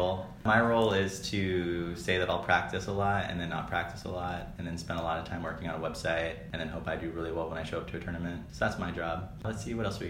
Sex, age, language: male, 20-39, English